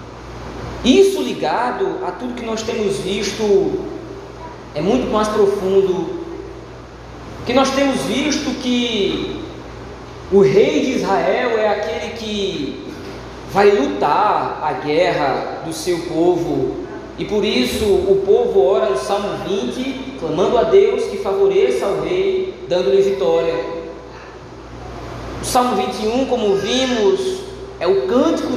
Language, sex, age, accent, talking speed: Portuguese, male, 20-39, Brazilian, 120 wpm